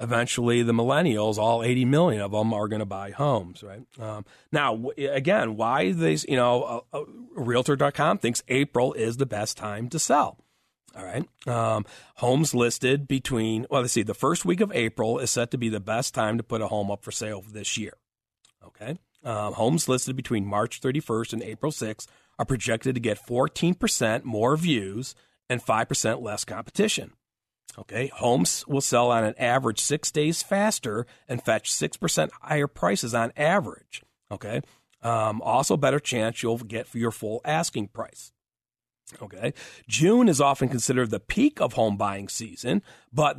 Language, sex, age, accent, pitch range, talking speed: English, male, 40-59, American, 110-135 Hz, 170 wpm